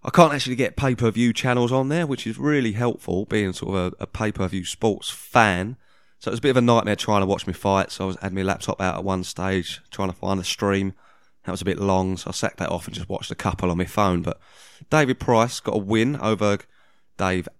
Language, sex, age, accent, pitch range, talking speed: English, male, 20-39, British, 95-115 Hz, 250 wpm